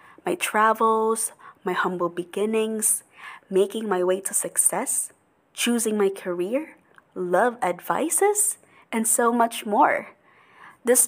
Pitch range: 190-240 Hz